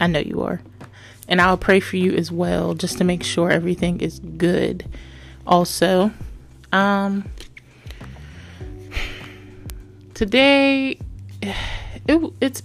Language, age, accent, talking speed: English, 20-39, American, 115 wpm